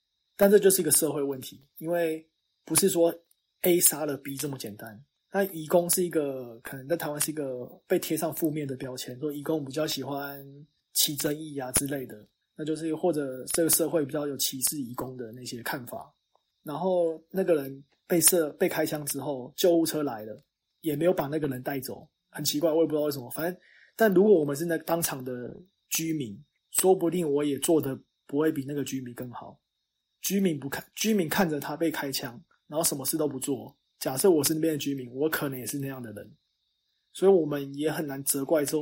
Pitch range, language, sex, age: 135-165 Hz, Chinese, male, 20-39